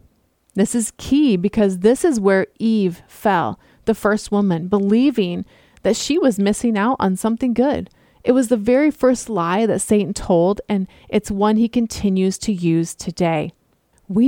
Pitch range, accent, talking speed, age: 180-235 Hz, American, 165 wpm, 30-49